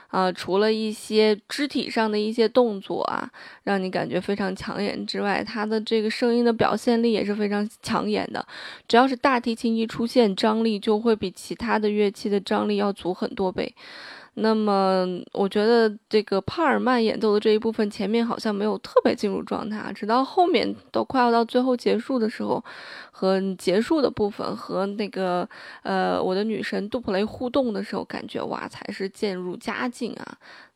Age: 20-39